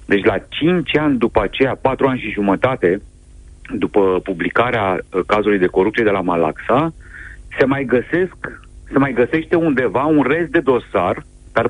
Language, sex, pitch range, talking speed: Romanian, male, 95-130 Hz, 155 wpm